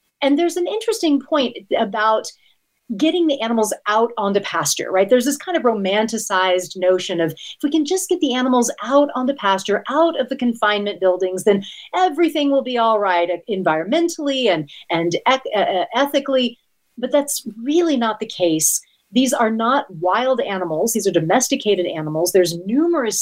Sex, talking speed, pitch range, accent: female, 165 wpm, 195-285 Hz, American